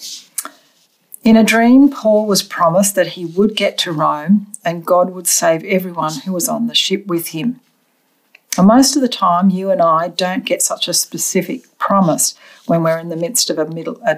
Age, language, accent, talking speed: 50-69, English, Australian, 200 wpm